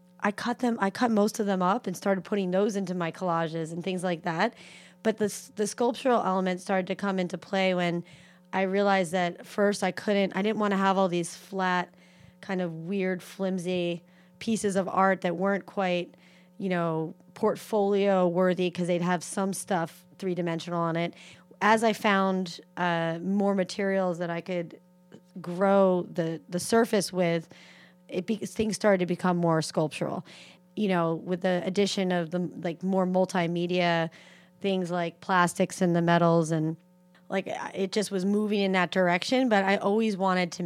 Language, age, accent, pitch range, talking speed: English, 30-49, American, 175-195 Hz, 175 wpm